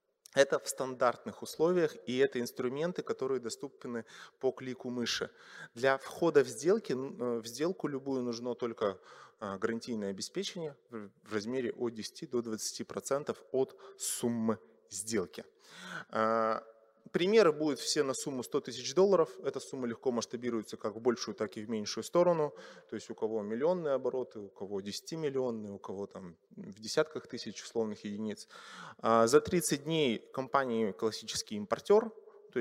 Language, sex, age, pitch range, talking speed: Russian, male, 20-39, 110-170 Hz, 140 wpm